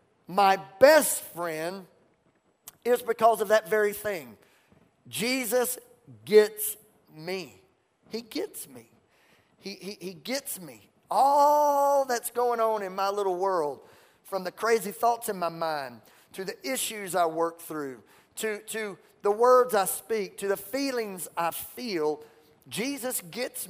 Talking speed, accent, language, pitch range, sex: 135 wpm, American, English, 185-240 Hz, male